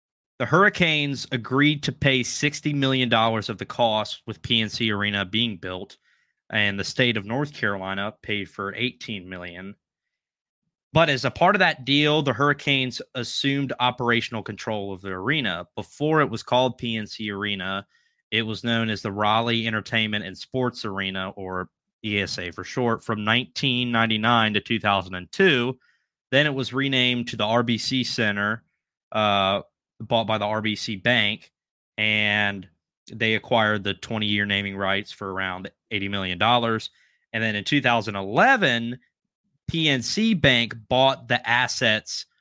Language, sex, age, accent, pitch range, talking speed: English, male, 30-49, American, 105-130 Hz, 140 wpm